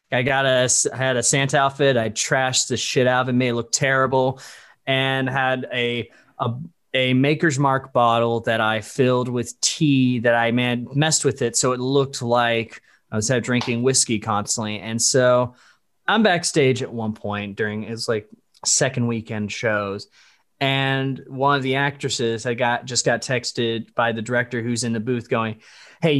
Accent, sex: American, male